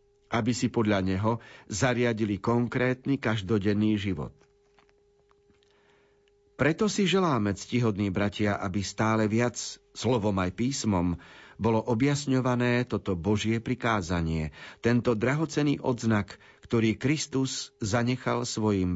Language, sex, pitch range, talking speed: Slovak, male, 105-135 Hz, 100 wpm